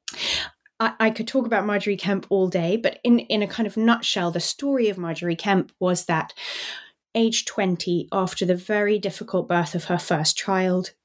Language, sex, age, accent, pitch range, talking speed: English, female, 20-39, British, 180-215 Hz, 180 wpm